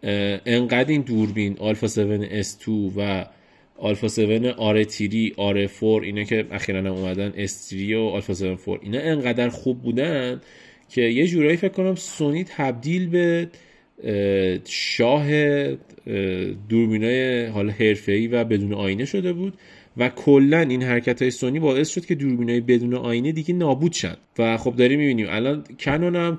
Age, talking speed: 30-49, 150 wpm